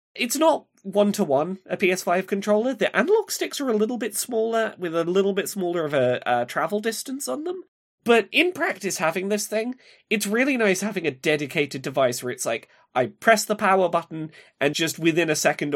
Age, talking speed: 20-39, 200 wpm